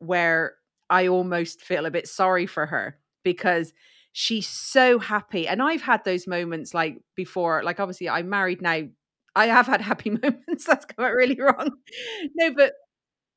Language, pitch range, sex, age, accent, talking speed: English, 180-235 Hz, female, 30-49, British, 160 wpm